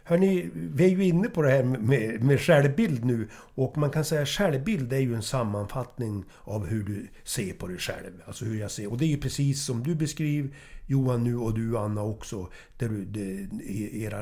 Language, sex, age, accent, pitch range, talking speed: English, male, 60-79, Swedish, 115-165 Hz, 205 wpm